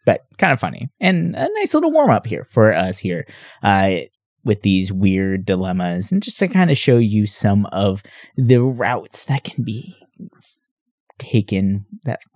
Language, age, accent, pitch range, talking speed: English, 20-39, American, 100-150 Hz, 170 wpm